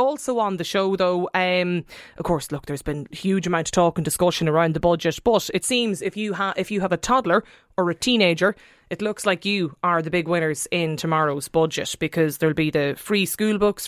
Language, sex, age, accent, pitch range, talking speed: English, female, 20-39, Irish, 170-205 Hz, 225 wpm